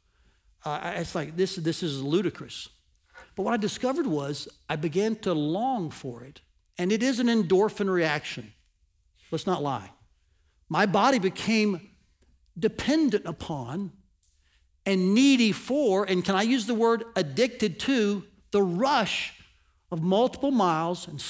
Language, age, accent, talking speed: English, 60-79, American, 140 wpm